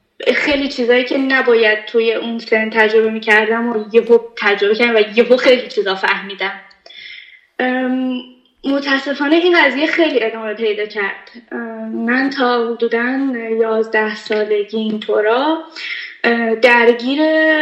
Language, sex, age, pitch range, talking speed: Persian, female, 10-29, 225-275 Hz, 110 wpm